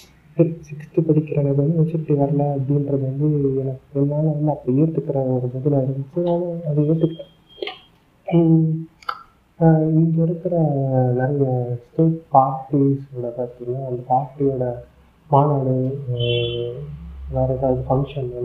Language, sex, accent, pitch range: Tamil, male, native, 125-150 Hz